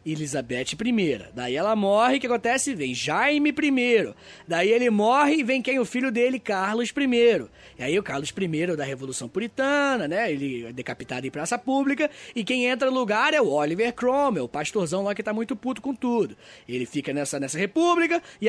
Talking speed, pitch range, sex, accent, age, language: 200 wpm, 190-270 Hz, male, Brazilian, 20-39, Portuguese